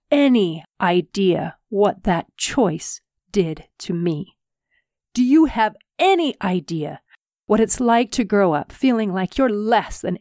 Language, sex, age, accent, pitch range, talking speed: English, female, 40-59, American, 185-265 Hz, 140 wpm